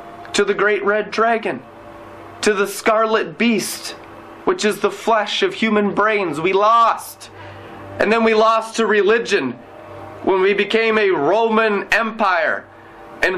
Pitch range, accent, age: 200-270 Hz, American, 30-49